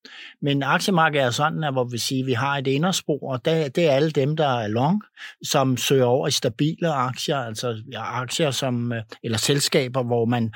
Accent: native